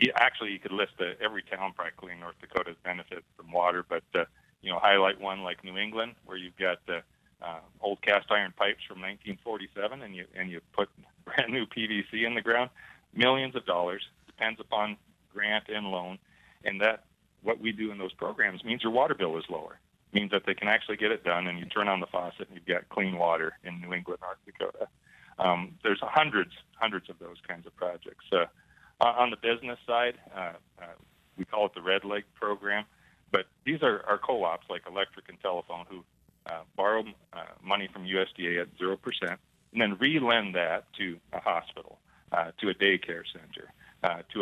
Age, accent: 40-59, American